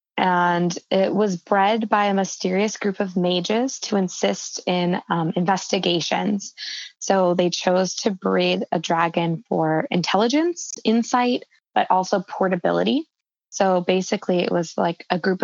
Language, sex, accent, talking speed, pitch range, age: English, female, American, 135 wpm, 170-200 Hz, 20-39